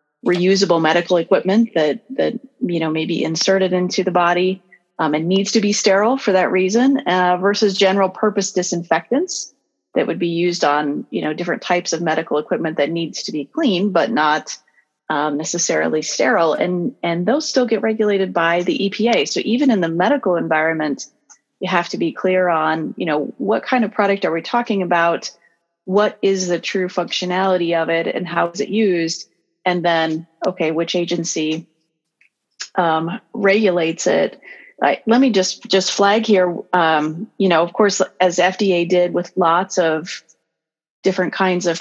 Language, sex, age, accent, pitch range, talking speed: English, female, 30-49, American, 165-195 Hz, 175 wpm